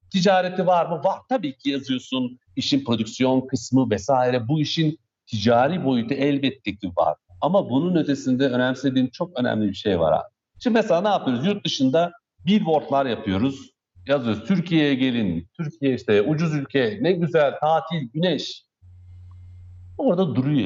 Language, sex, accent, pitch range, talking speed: Turkish, male, native, 105-165 Hz, 135 wpm